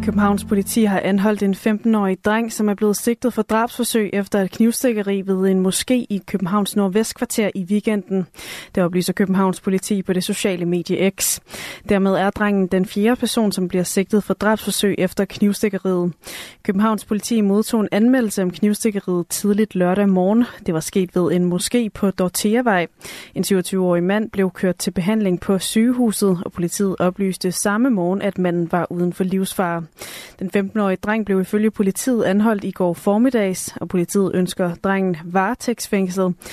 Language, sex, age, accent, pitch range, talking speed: Danish, female, 20-39, native, 185-215 Hz, 165 wpm